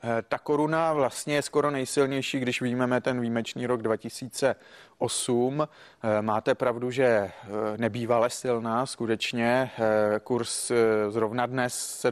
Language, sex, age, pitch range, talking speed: Czech, male, 30-49, 120-140 Hz, 110 wpm